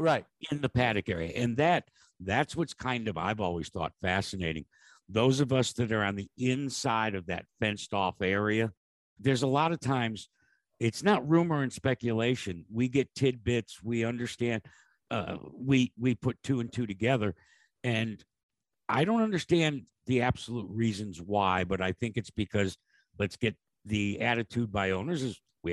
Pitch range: 105-125 Hz